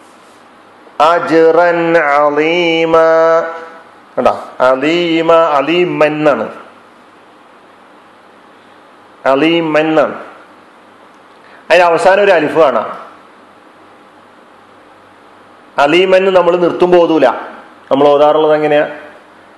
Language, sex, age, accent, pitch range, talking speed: Malayalam, male, 40-59, native, 155-170 Hz, 35 wpm